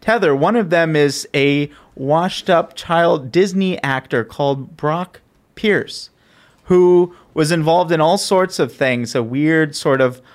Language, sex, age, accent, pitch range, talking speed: English, male, 30-49, American, 135-175 Hz, 150 wpm